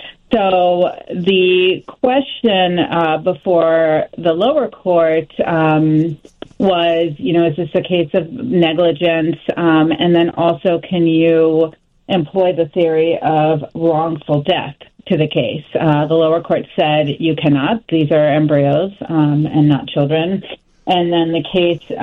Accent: American